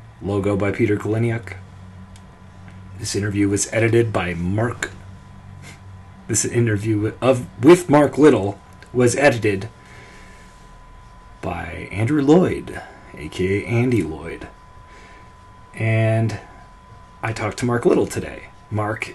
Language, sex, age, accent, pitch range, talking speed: English, male, 30-49, American, 100-120 Hz, 100 wpm